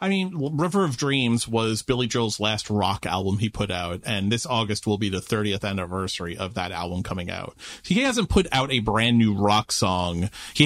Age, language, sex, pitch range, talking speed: 30-49, English, male, 105-155 Hz, 210 wpm